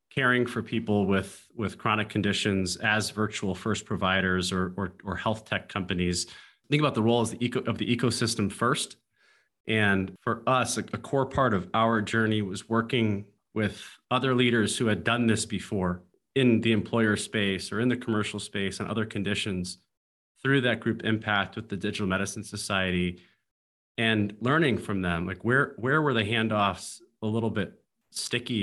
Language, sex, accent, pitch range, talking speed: English, male, American, 95-115 Hz, 175 wpm